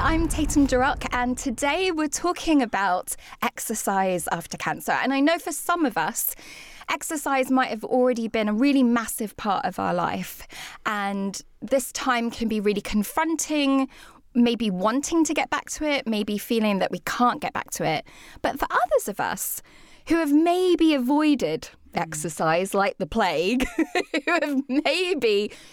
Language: English